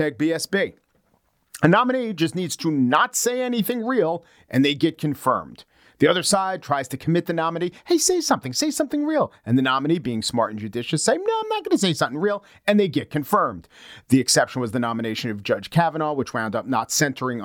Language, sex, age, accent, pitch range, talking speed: English, male, 40-59, American, 115-175 Hz, 210 wpm